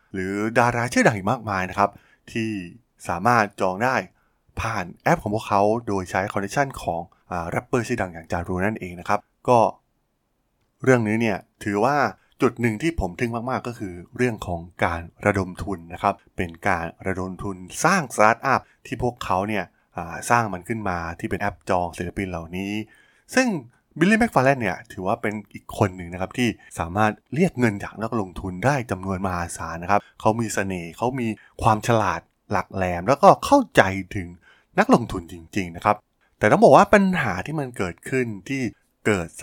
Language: Thai